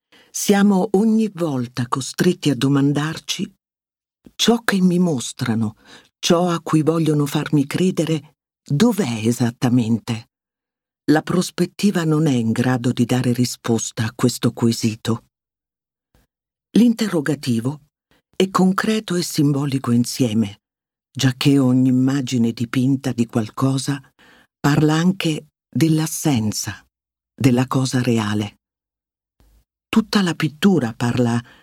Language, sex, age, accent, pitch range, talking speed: Italian, female, 50-69, native, 120-160 Hz, 100 wpm